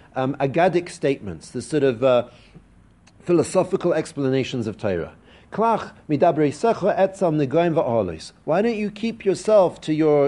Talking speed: 100 wpm